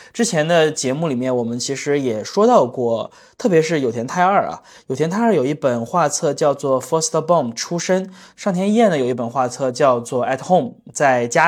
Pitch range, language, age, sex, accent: 125-170 Hz, Chinese, 20-39, male, native